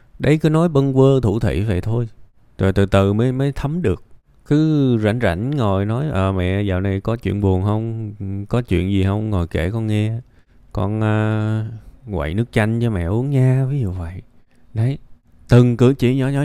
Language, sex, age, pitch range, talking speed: Vietnamese, male, 20-39, 90-120 Hz, 205 wpm